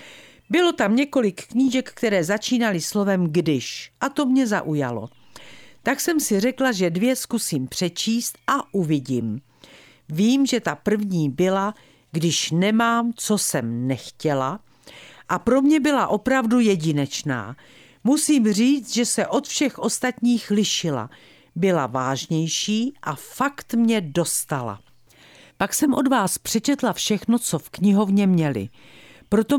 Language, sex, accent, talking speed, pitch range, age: Czech, female, native, 130 wpm, 165-235 Hz, 50-69